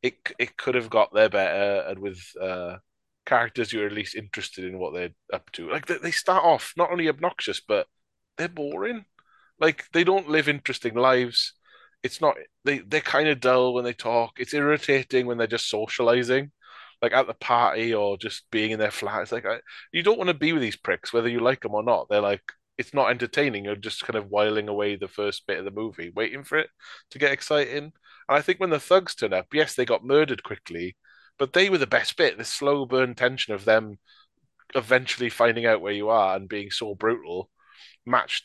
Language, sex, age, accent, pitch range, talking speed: English, male, 20-39, British, 105-145 Hz, 215 wpm